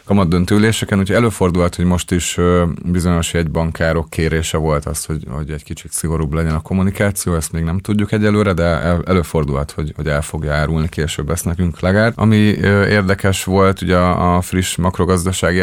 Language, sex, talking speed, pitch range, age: Hungarian, male, 170 wpm, 80-90 Hz, 30-49